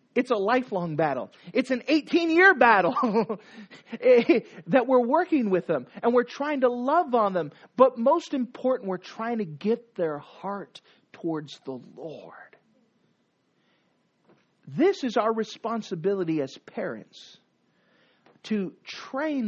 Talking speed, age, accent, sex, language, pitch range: 125 wpm, 40-59, American, male, English, 185-255 Hz